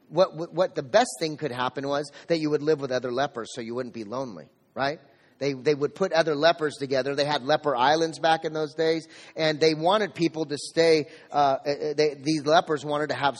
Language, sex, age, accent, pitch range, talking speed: English, male, 30-49, American, 140-170 Hz, 225 wpm